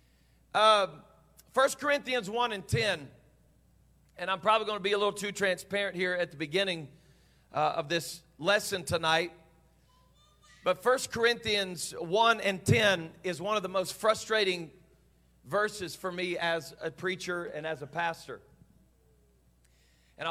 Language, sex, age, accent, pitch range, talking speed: English, male, 40-59, American, 120-190 Hz, 140 wpm